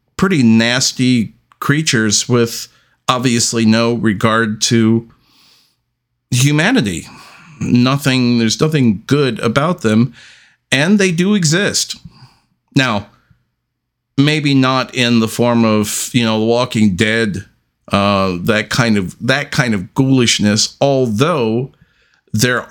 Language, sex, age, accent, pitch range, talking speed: English, male, 50-69, American, 115-140 Hz, 110 wpm